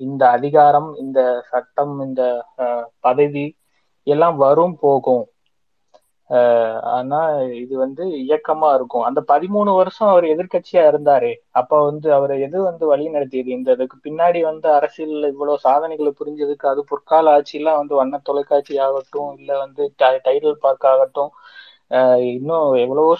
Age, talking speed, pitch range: 20-39, 130 wpm, 130-155 Hz